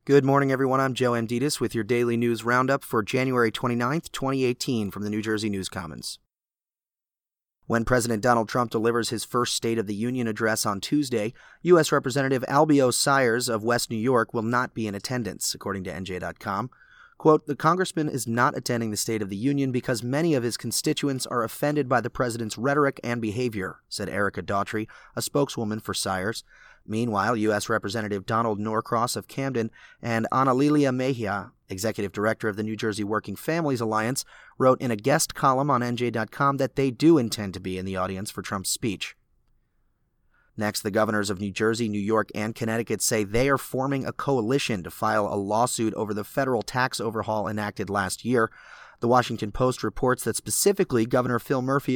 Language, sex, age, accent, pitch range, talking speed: English, male, 30-49, American, 110-130 Hz, 180 wpm